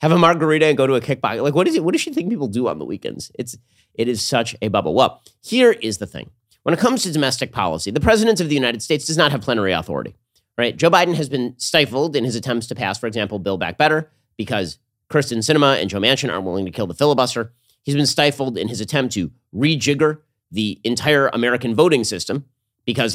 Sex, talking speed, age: male, 240 wpm, 30-49